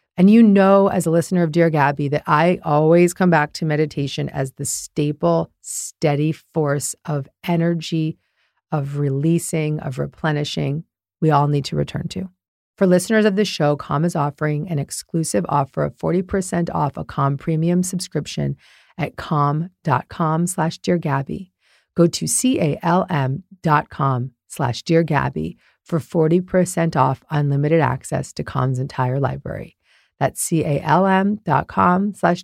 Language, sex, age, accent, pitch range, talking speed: English, female, 40-59, American, 140-175 Hz, 135 wpm